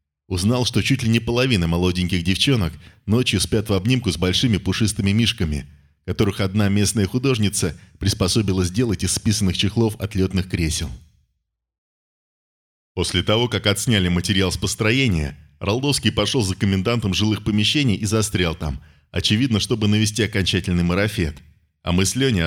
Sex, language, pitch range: male, Russian, 85-110 Hz